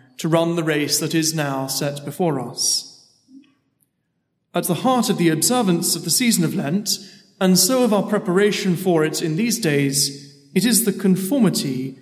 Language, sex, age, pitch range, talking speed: English, male, 40-59, 150-195 Hz, 175 wpm